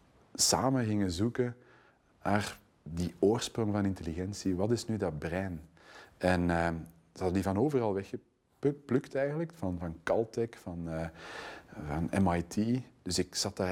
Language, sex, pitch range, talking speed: Dutch, male, 90-110 Hz, 145 wpm